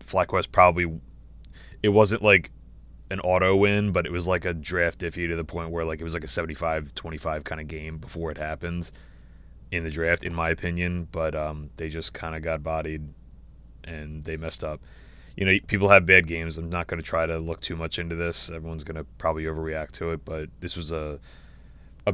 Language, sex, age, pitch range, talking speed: English, male, 20-39, 80-90 Hz, 215 wpm